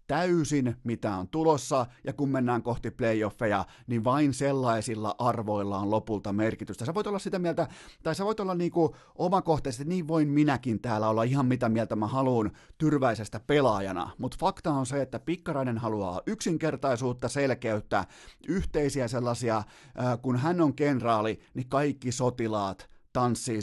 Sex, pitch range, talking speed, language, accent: male, 110-145 Hz, 150 wpm, Finnish, native